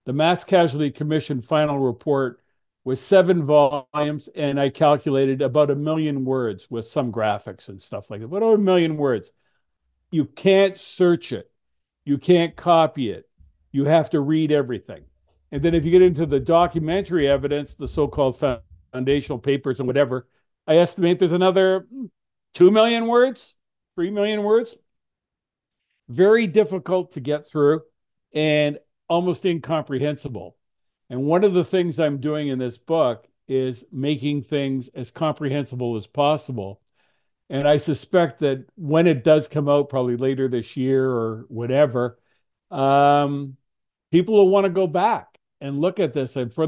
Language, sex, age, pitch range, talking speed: English, male, 60-79, 130-165 Hz, 150 wpm